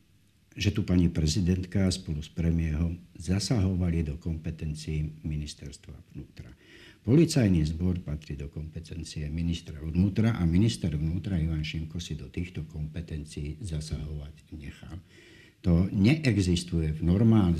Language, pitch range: Slovak, 75-90 Hz